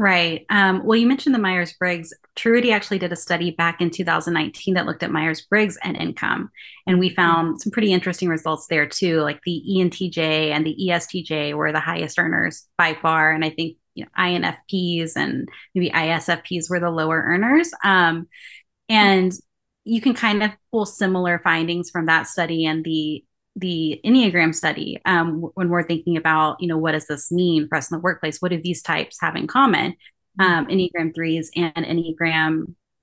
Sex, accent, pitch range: female, American, 160-185 Hz